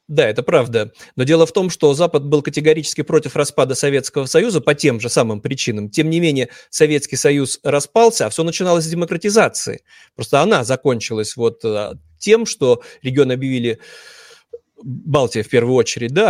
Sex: male